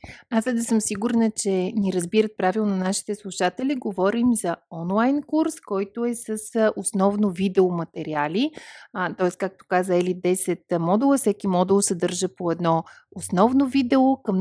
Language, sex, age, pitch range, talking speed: Bulgarian, female, 30-49, 180-225 Hz, 145 wpm